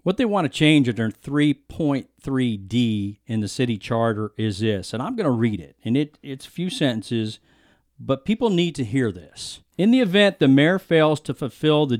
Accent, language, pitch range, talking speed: American, English, 120-155 Hz, 195 wpm